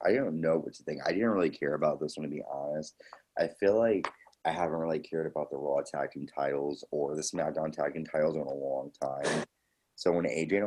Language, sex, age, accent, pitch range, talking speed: English, male, 30-49, American, 70-80 Hz, 240 wpm